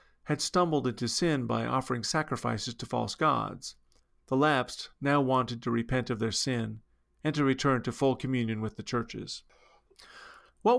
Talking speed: 160 wpm